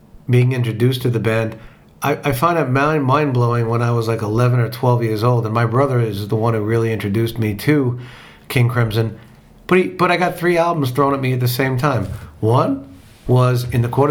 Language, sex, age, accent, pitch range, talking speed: English, male, 50-69, American, 115-140 Hz, 215 wpm